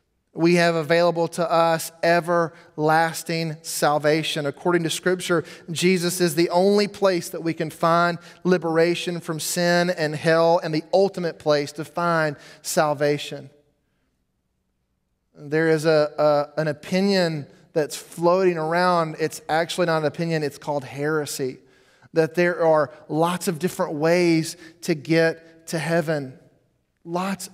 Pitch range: 160-195 Hz